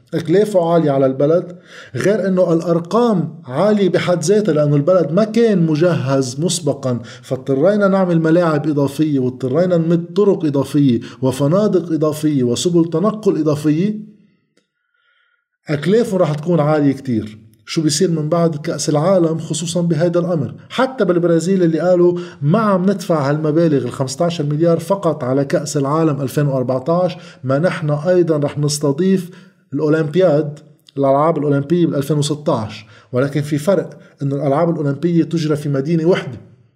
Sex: male